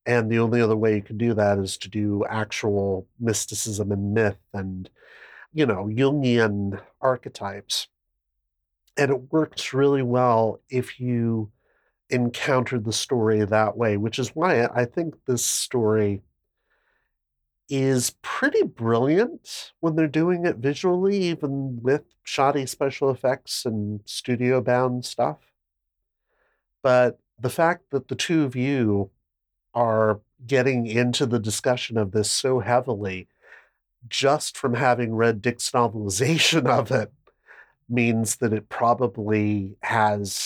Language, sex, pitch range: English, male, 105-130 Hz